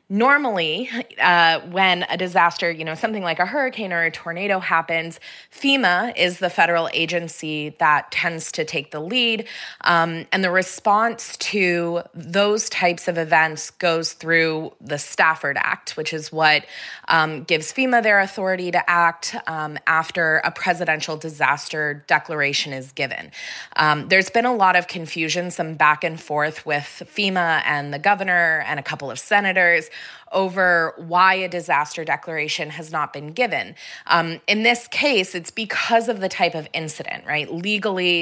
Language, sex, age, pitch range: English, female, 20-39, 155-190 Hz